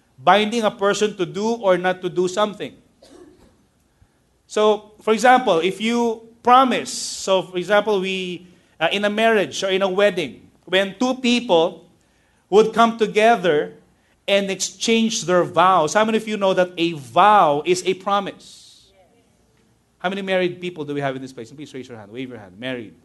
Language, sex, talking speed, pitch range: English, male, 175 wpm, 170-225 Hz